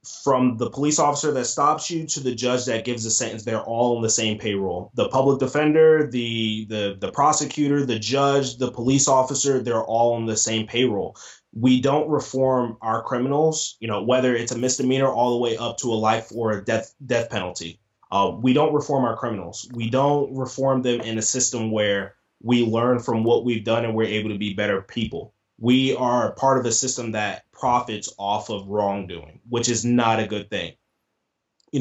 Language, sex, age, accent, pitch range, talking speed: English, male, 20-39, American, 110-130 Hz, 200 wpm